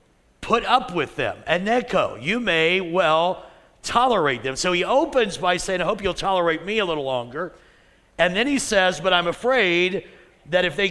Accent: American